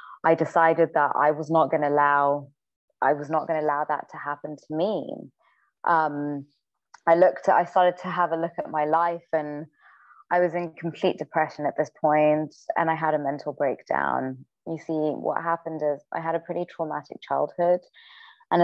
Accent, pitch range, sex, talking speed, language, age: British, 145-165 Hz, female, 185 wpm, English, 20-39